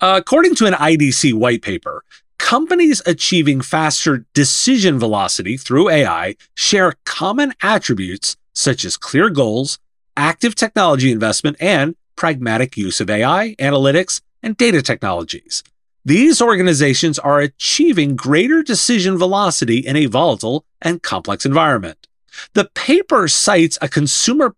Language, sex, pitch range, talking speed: English, male, 135-200 Hz, 120 wpm